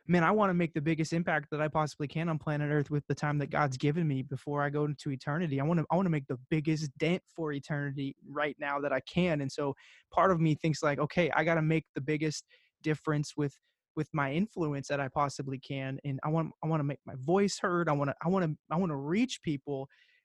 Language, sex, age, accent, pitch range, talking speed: English, male, 20-39, American, 145-175 Hz, 260 wpm